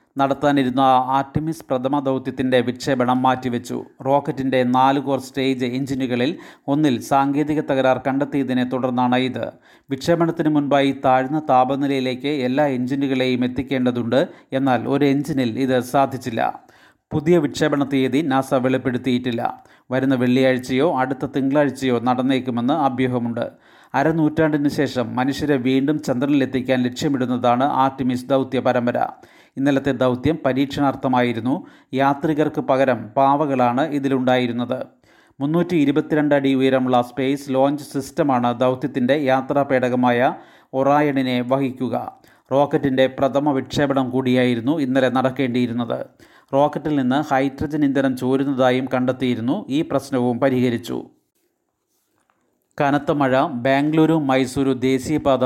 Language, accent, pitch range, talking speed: Malayalam, native, 130-140 Hz, 95 wpm